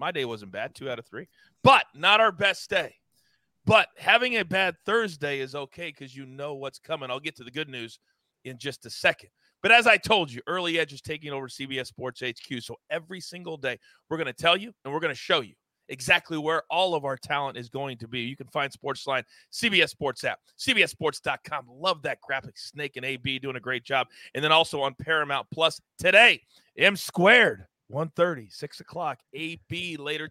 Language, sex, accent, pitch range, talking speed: English, male, American, 130-160 Hz, 210 wpm